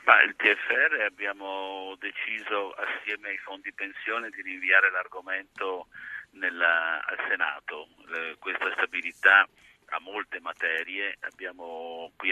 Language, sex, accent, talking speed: Italian, male, native, 105 wpm